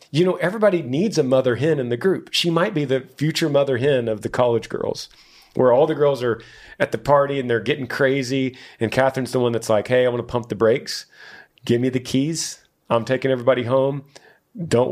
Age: 40-59